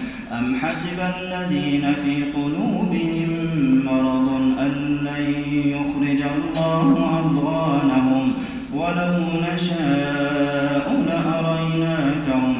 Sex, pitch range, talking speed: male, 140-160 Hz, 60 wpm